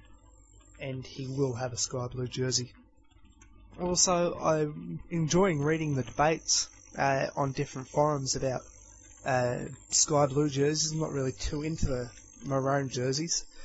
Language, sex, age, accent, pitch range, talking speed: English, male, 20-39, Australian, 130-160 Hz, 135 wpm